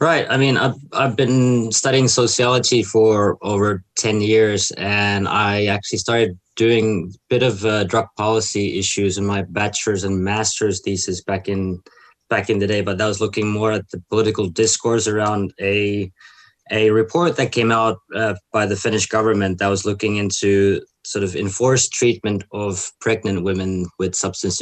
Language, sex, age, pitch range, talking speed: English, male, 20-39, 100-110 Hz, 170 wpm